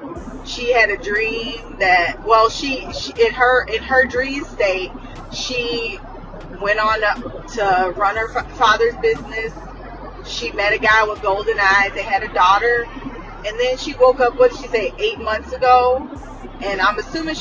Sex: female